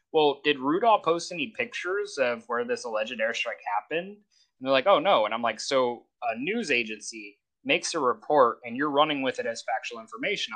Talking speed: 200 wpm